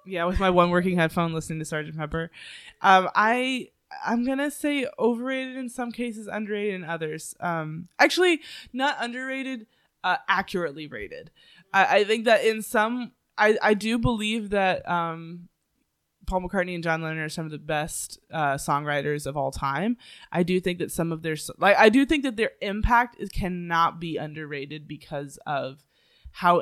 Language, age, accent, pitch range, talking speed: English, 20-39, American, 160-240 Hz, 175 wpm